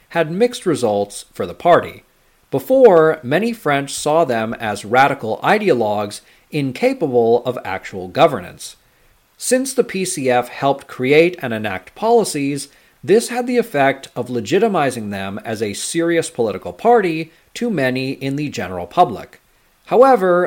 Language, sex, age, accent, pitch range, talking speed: English, male, 40-59, American, 115-170 Hz, 130 wpm